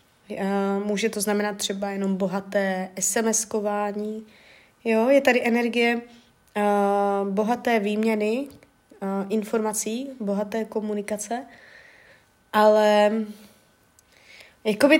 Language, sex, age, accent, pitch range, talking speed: Czech, female, 20-39, native, 200-245 Hz, 85 wpm